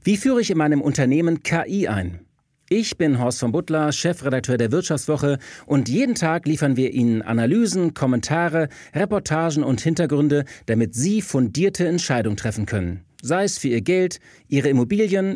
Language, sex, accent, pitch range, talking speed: German, male, German, 115-165 Hz, 155 wpm